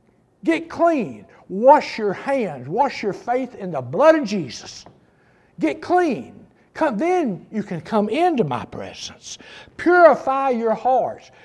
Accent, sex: American, male